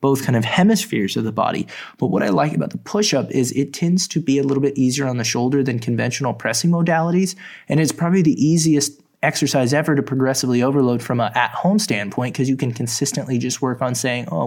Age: 20-39